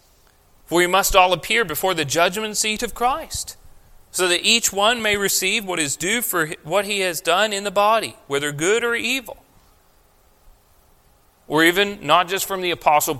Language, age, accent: English, 40-59, American